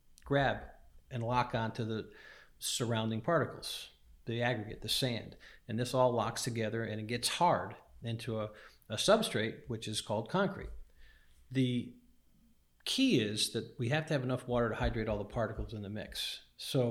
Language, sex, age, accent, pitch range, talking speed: English, male, 50-69, American, 110-130 Hz, 165 wpm